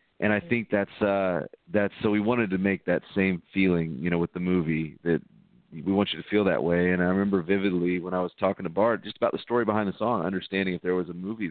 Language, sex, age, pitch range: English, male, 40-59, 85-100 Hz